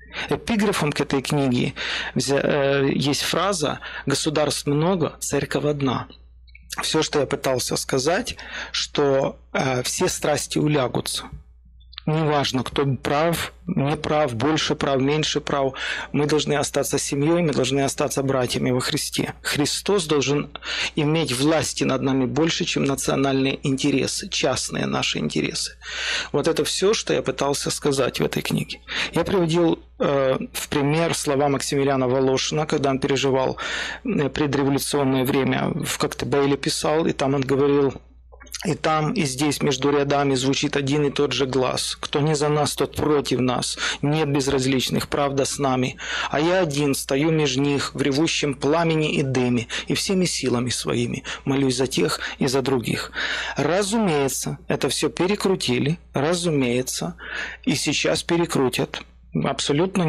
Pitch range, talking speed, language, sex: 135-155 Hz, 135 wpm, Russian, male